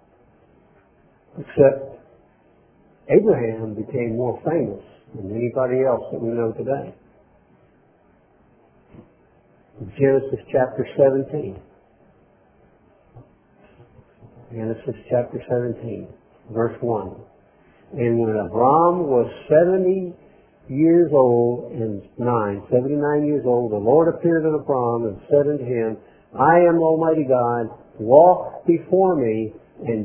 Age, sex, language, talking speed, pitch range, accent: 50-69, male, English, 100 wpm, 120-165 Hz, American